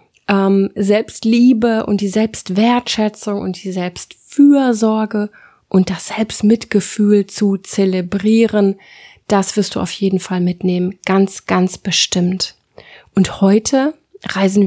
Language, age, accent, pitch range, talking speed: German, 30-49, German, 190-225 Hz, 105 wpm